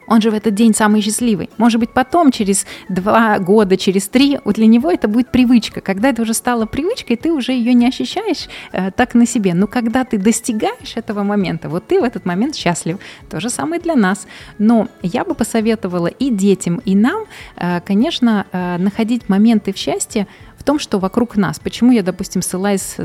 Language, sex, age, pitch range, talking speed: Russian, female, 30-49, 190-235 Hz, 185 wpm